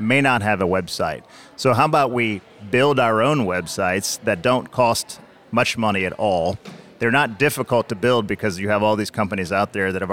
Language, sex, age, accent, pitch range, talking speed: English, male, 30-49, American, 100-130 Hz, 205 wpm